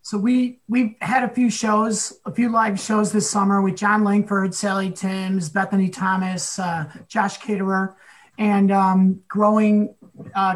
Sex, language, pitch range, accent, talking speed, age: male, English, 200-245 Hz, American, 150 wpm, 30-49